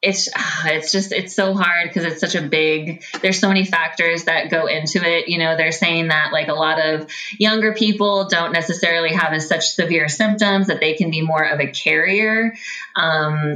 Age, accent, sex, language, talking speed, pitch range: 20-39, American, female, English, 205 wpm, 155-190 Hz